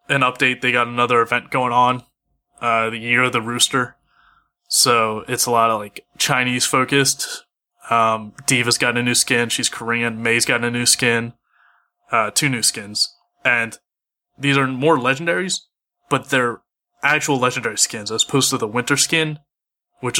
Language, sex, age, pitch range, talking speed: English, male, 20-39, 120-145 Hz, 165 wpm